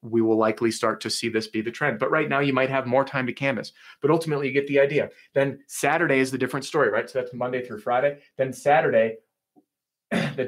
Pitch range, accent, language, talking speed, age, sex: 115-140 Hz, American, English, 235 wpm, 30-49, male